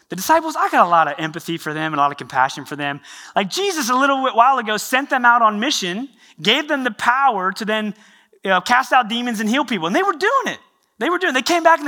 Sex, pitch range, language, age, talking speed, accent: male, 170-260 Hz, English, 30-49, 280 wpm, American